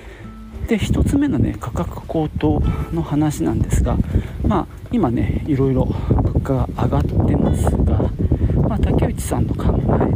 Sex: male